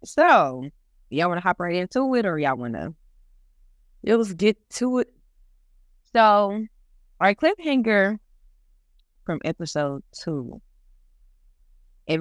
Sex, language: female, English